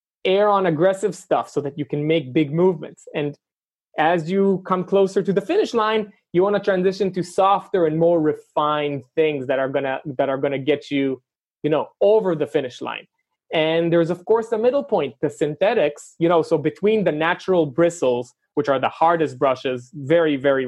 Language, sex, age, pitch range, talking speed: English, male, 20-39, 145-185 Hz, 200 wpm